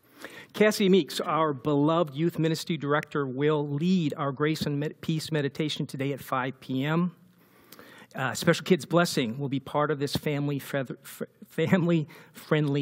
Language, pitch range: English, 145-175 Hz